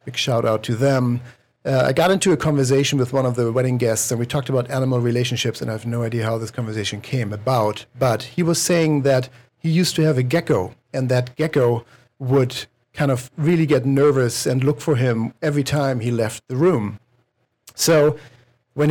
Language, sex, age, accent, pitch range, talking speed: English, male, 50-69, German, 120-140 Hz, 205 wpm